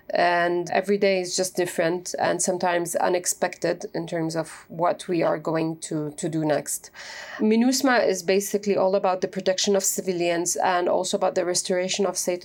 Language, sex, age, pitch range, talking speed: English, female, 30-49, 175-195 Hz, 175 wpm